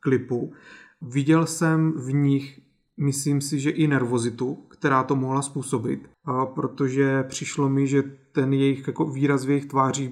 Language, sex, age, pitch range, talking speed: Czech, male, 30-49, 130-145 Hz, 150 wpm